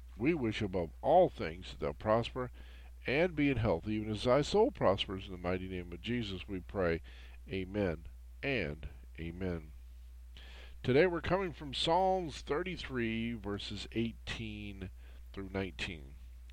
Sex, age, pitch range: male, 50-69, 80-135 Hz